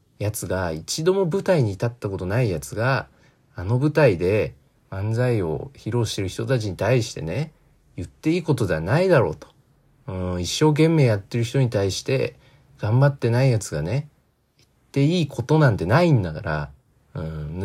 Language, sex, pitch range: Japanese, male, 95-135 Hz